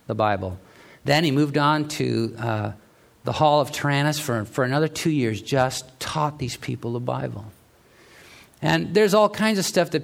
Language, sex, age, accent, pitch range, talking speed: English, male, 50-69, American, 130-175 Hz, 175 wpm